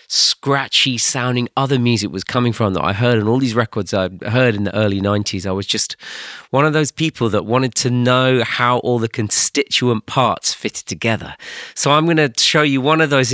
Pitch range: 100-135 Hz